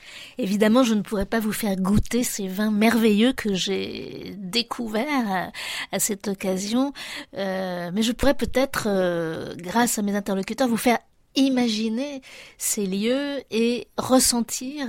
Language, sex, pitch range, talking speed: French, female, 195-245 Hz, 140 wpm